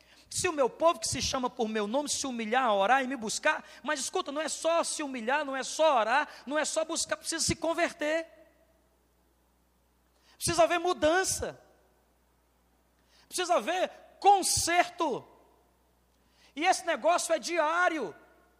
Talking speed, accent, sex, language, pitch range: 145 wpm, Brazilian, male, Portuguese, 270-335 Hz